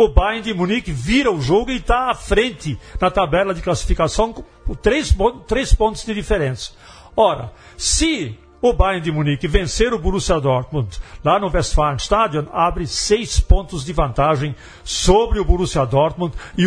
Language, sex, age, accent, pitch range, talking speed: Portuguese, male, 60-79, Brazilian, 145-205 Hz, 160 wpm